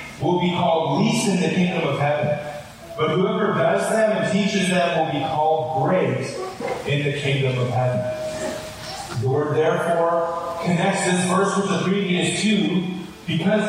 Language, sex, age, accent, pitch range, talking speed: English, male, 30-49, American, 155-195 Hz, 160 wpm